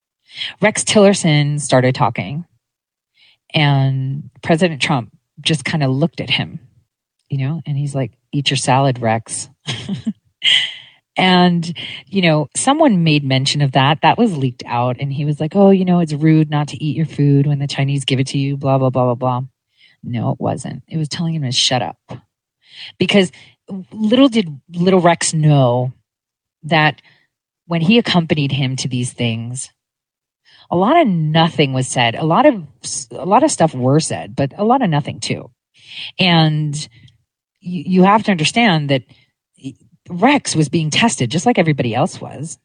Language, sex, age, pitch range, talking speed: English, female, 30-49, 130-170 Hz, 170 wpm